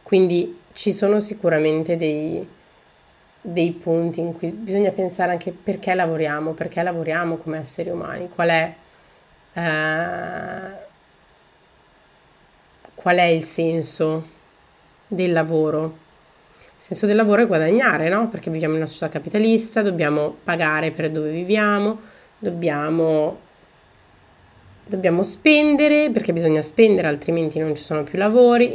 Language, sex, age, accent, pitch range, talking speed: Italian, female, 30-49, native, 155-180 Hz, 115 wpm